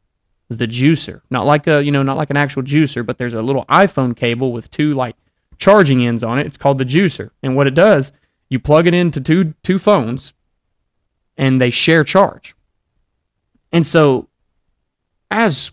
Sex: male